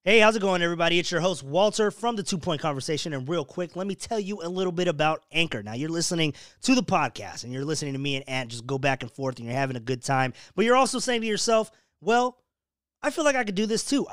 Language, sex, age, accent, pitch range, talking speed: English, male, 20-39, American, 140-200 Hz, 275 wpm